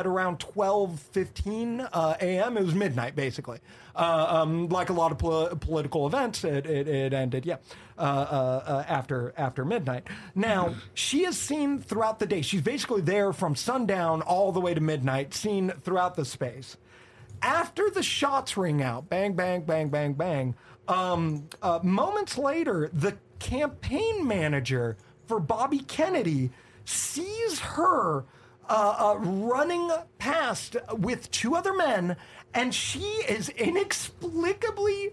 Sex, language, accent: male, English, American